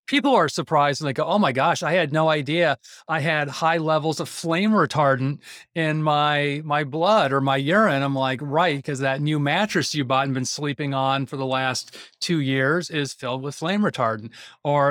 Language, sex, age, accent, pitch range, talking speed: English, male, 40-59, American, 135-165 Hz, 205 wpm